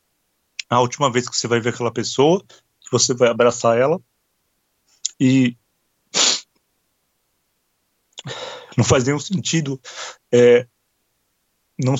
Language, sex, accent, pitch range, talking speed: Portuguese, male, Brazilian, 115-130 Hz, 100 wpm